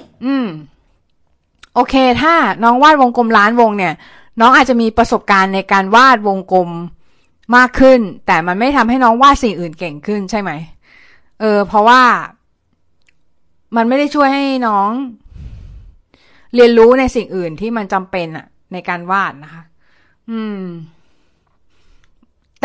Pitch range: 170-235 Hz